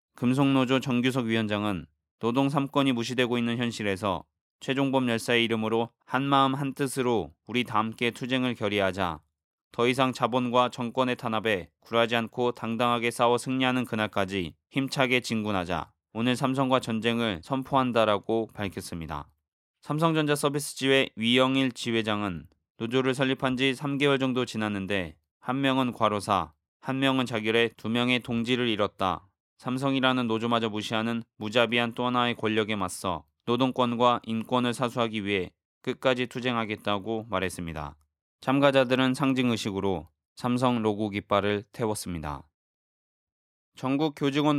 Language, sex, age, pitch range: Korean, male, 20-39, 105-130 Hz